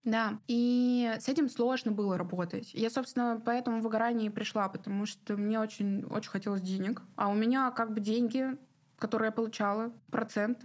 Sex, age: female, 20-39